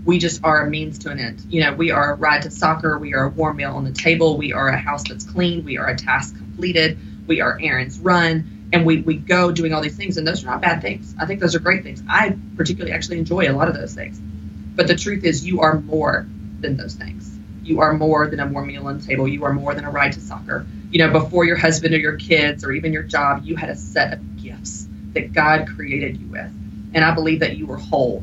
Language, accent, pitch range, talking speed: English, American, 105-165 Hz, 270 wpm